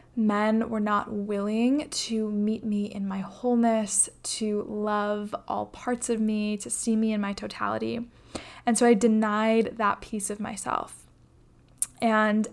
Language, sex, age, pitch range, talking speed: English, female, 10-29, 205-230 Hz, 150 wpm